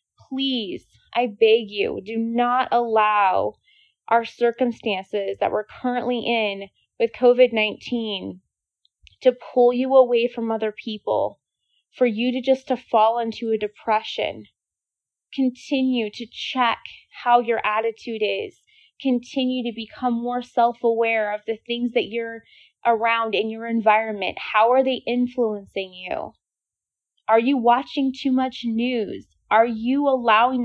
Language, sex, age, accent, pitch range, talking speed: English, female, 20-39, American, 225-265 Hz, 130 wpm